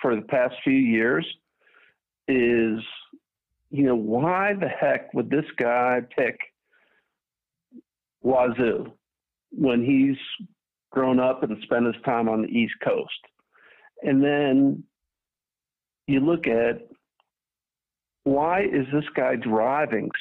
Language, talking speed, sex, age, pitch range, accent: English, 115 wpm, male, 50-69, 115-140 Hz, American